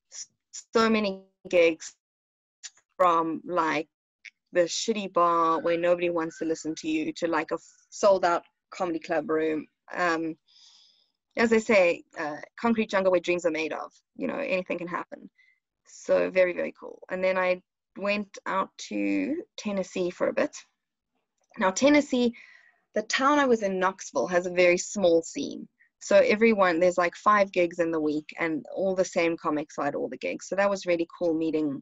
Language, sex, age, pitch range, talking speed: English, female, 20-39, 175-220 Hz, 170 wpm